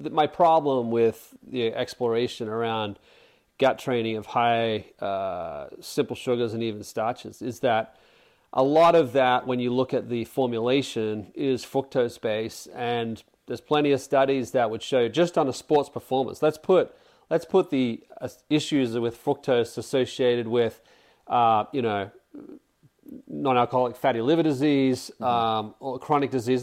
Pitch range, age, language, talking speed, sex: 120-145 Hz, 30-49, English, 145 wpm, male